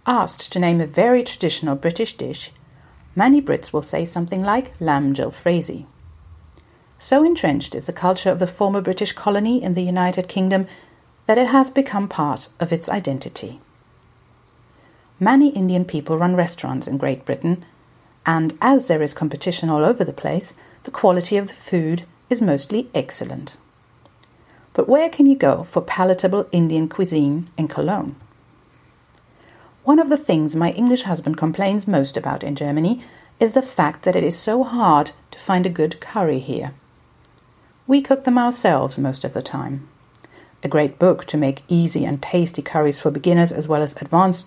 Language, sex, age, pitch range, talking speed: German, female, 50-69, 150-205 Hz, 165 wpm